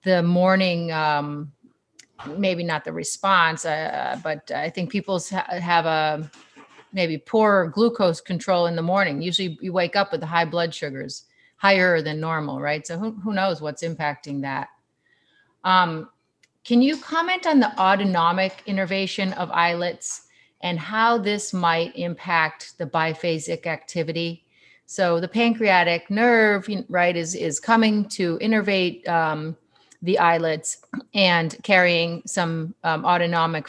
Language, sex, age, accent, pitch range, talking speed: English, female, 30-49, American, 160-190 Hz, 140 wpm